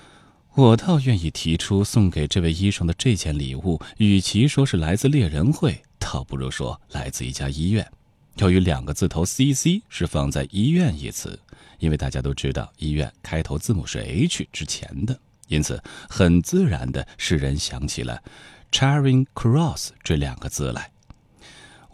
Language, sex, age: Chinese, male, 30-49